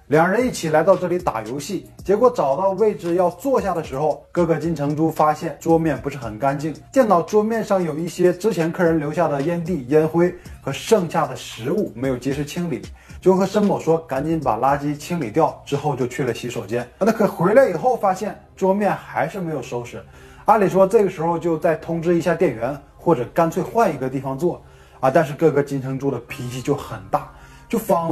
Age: 20-39